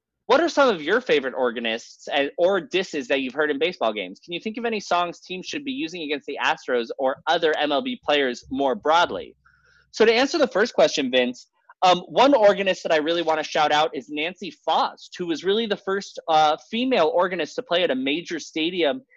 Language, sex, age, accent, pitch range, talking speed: English, male, 20-39, American, 140-225 Hz, 215 wpm